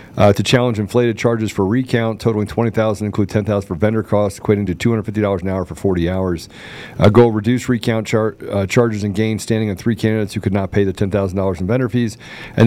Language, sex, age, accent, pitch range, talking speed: English, male, 40-59, American, 105-120 Hz, 215 wpm